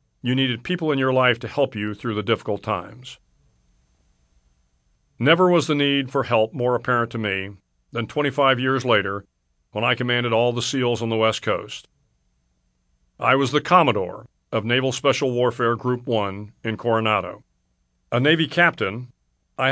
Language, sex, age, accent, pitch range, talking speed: English, male, 50-69, American, 105-135 Hz, 160 wpm